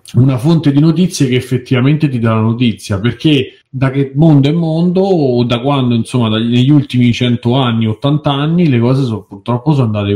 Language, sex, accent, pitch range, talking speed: Italian, male, native, 110-145 Hz, 190 wpm